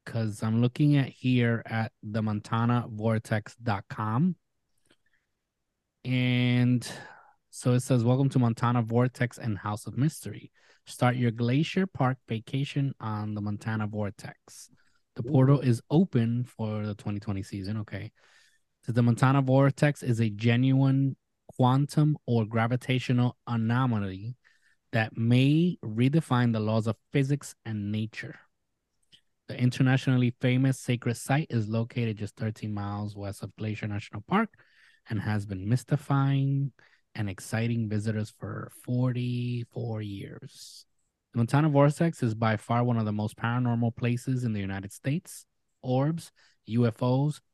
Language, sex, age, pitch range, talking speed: English, male, 20-39, 110-135 Hz, 125 wpm